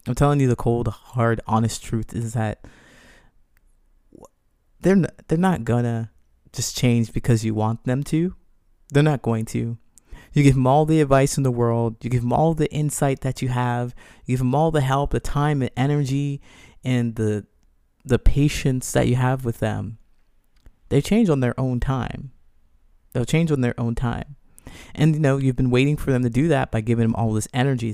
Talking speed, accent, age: 200 wpm, American, 20-39